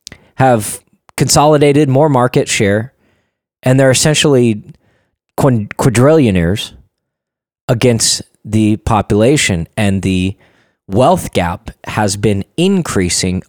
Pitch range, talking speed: 95-140 Hz, 85 wpm